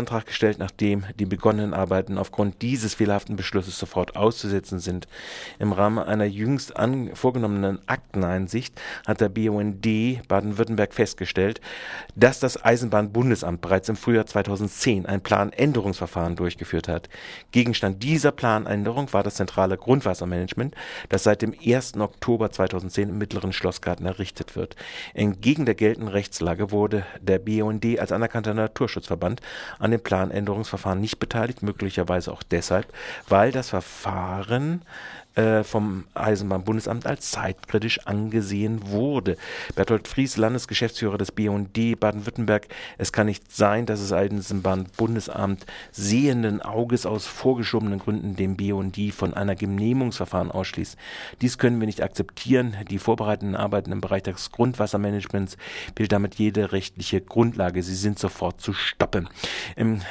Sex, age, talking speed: male, 40-59, 130 wpm